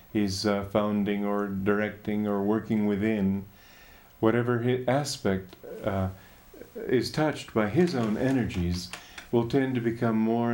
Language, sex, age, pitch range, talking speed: English, male, 50-69, 95-120 Hz, 130 wpm